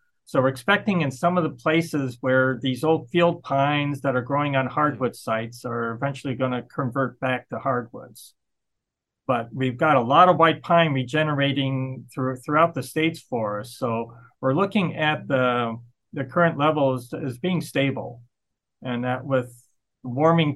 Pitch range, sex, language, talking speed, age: 125-150 Hz, male, English, 160 wpm, 40-59